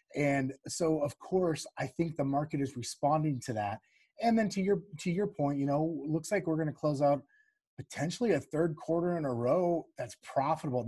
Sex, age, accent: male, 30-49, American